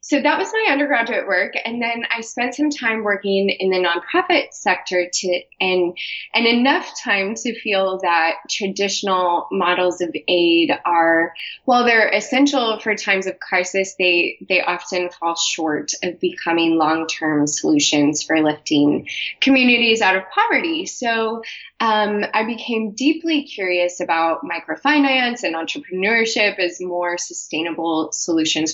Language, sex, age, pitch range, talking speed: English, female, 20-39, 175-245 Hz, 140 wpm